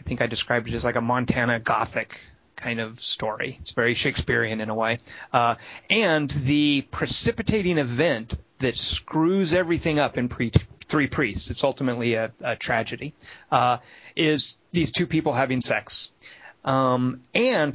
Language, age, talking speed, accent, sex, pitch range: English, 30-49, 150 wpm, American, male, 120-155 Hz